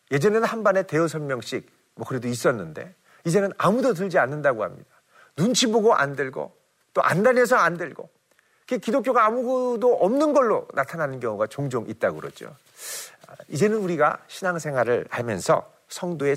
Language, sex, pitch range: Korean, male, 160-235 Hz